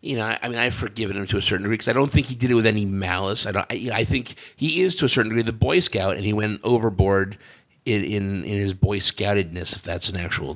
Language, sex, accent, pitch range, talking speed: English, male, American, 100-125 Hz, 280 wpm